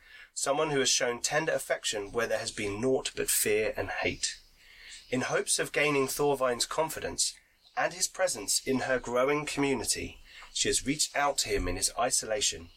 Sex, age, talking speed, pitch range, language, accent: male, 30-49, 175 wpm, 100-140 Hz, English, British